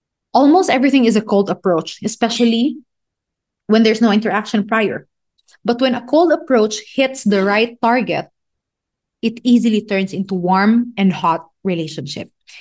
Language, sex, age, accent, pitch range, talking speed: English, female, 20-39, Filipino, 180-230 Hz, 140 wpm